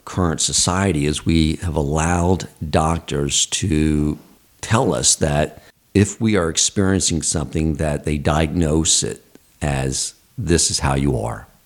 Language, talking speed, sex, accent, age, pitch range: English, 135 wpm, male, American, 50-69, 75-90 Hz